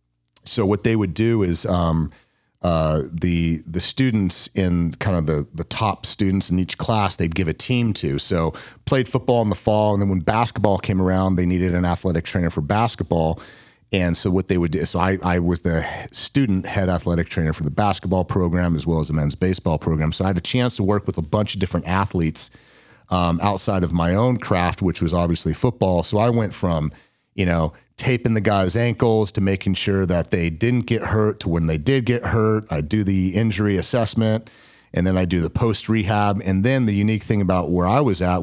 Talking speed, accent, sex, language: 220 wpm, American, male, English